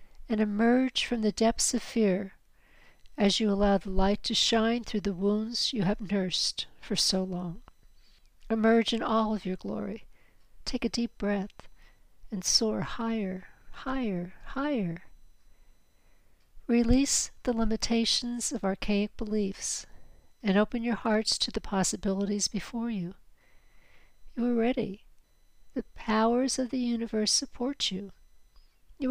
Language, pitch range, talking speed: English, 190-230 Hz, 130 wpm